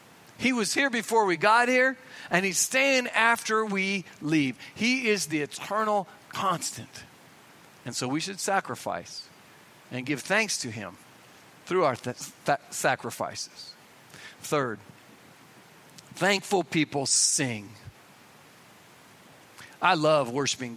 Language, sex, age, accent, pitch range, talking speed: English, male, 50-69, American, 150-220 Hz, 110 wpm